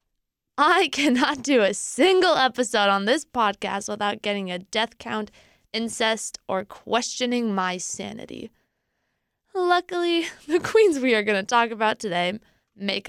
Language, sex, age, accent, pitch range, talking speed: English, female, 20-39, American, 215-275 Hz, 140 wpm